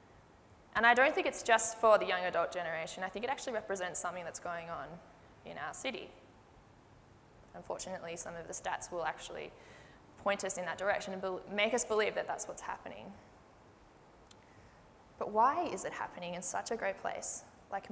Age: 20-39